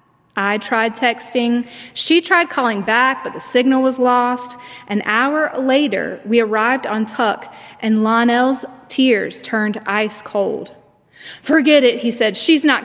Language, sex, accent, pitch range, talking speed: English, female, American, 215-275 Hz, 145 wpm